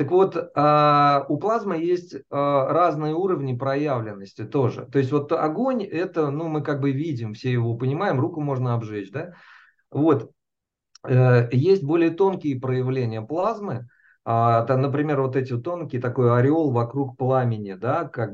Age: 40-59